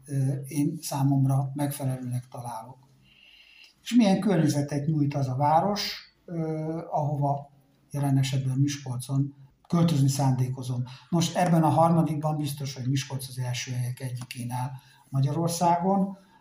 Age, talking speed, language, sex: 60-79, 105 wpm, Hungarian, male